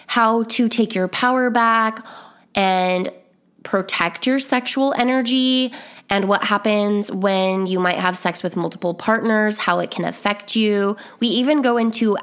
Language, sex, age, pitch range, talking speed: English, female, 10-29, 195-240 Hz, 150 wpm